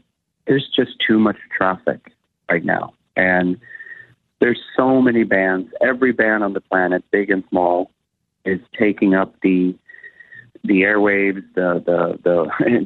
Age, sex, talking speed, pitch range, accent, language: 30-49, male, 130 wpm, 90-110 Hz, American, English